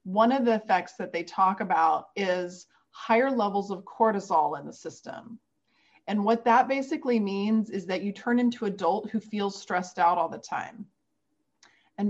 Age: 30-49